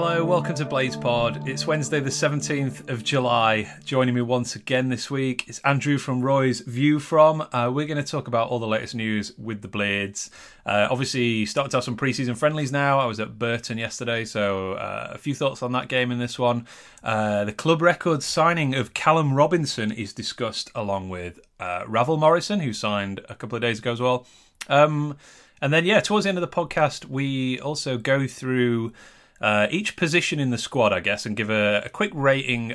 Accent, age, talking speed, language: British, 30-49, 205 wpm, English